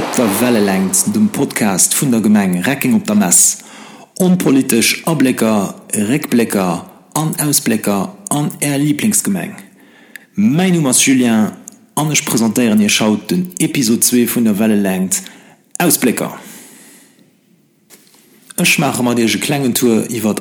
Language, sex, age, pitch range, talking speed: English, male, 50-69, 125-195 Hz, 125 wpm